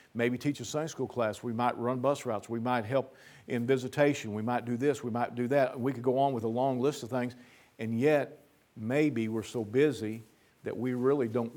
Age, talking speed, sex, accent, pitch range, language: 50-69, 230 wpm, male, American, 120-160 Hz, English